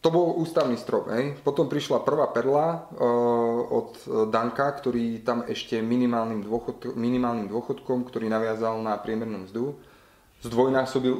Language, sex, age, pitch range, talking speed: Slovak, male, 30-49, 105-120 Hz, 130 wpm